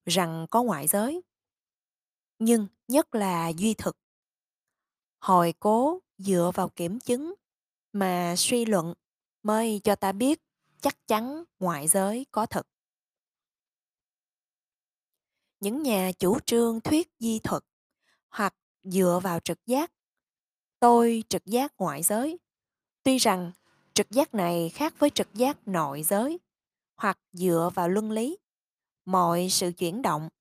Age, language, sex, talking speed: 20-39, Vietnamese, female, 130 wpm